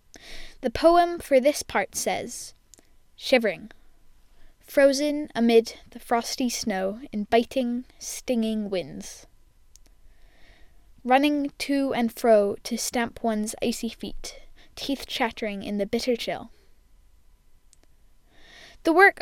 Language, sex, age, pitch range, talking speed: English, female, 10-29, 215-275 Hz, 105 wpm